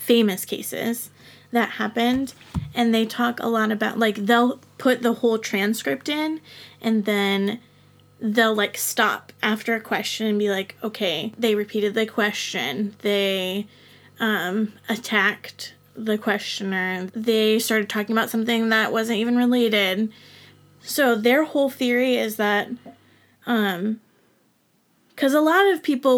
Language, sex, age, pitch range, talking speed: English, female, 20-39, 210-245 Hz, 135 wpm